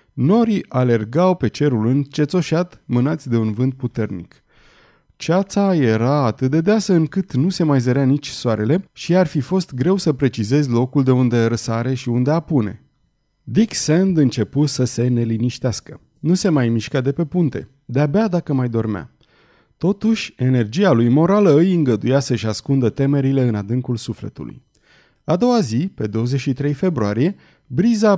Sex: male